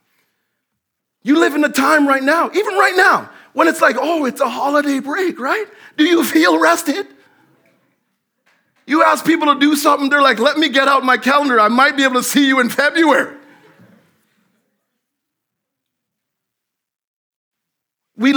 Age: 40-59